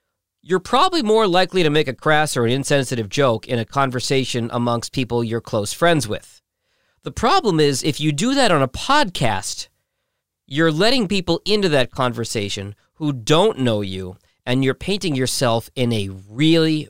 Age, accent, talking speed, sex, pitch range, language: 40-59, American, 170 wpm, male, 115-170 Hz, English